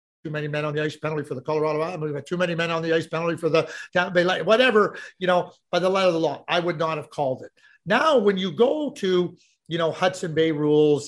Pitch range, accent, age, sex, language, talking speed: 150-190 Hz, American, 50-69, male, English, 255 wpm